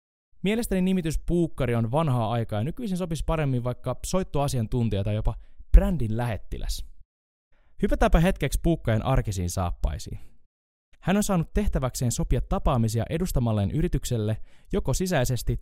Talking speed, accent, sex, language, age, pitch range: 120 wpm, native, male, Finnish, 20-39, 105-155 Hz